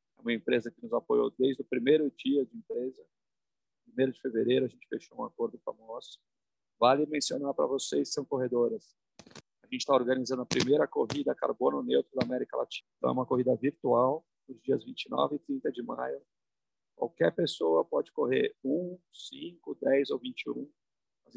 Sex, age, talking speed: male, 40-59, 170 wpm